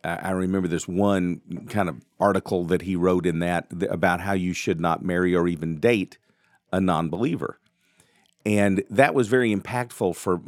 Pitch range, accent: 90-110 Hz, American